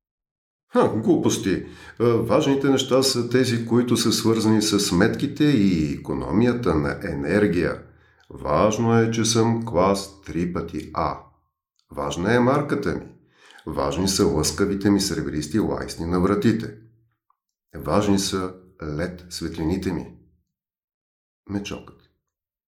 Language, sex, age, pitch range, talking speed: Bulgarian, male, 50-69, 85-120 Hz, 105 wpm